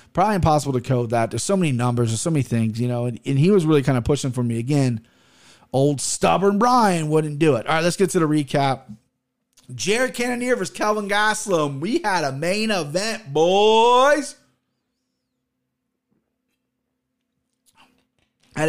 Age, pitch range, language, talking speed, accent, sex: 30-49, 130-185 Hz, English, 165 wpm, American, male